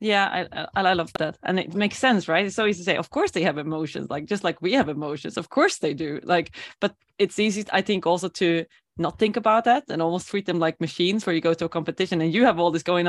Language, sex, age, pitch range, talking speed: English, female, 20-39, 165-205 Hz, 275 wpm